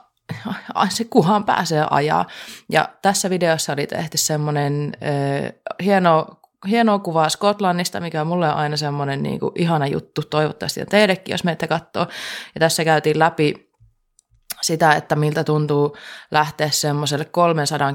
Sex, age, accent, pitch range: female, 20-39, native, 150-180 Hz